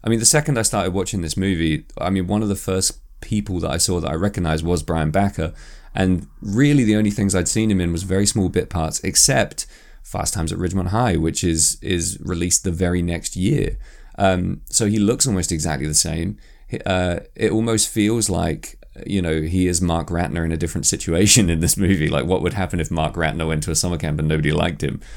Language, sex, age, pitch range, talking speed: English, male, 20-39, 80-100 Hz, 225 wpm